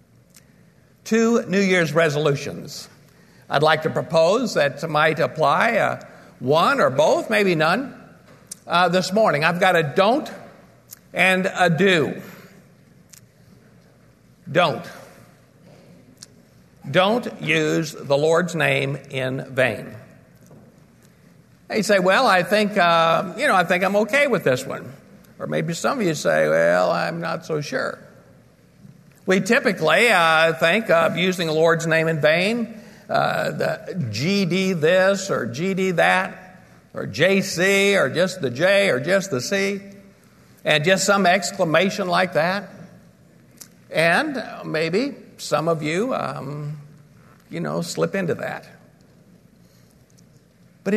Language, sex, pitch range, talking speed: English, male, 160-195 Hz, 130 wpm